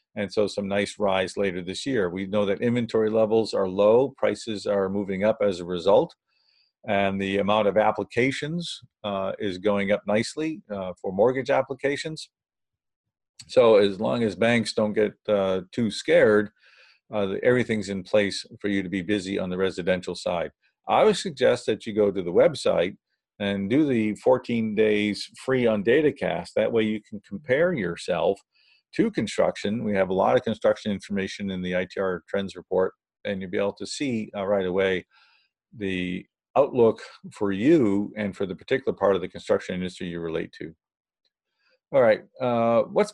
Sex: male